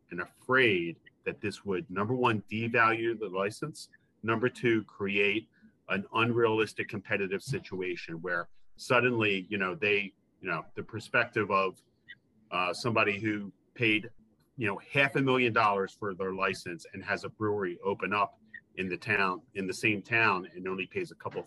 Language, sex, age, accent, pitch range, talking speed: English, male, 40-59, American, 100-125 Hz, 160 wpm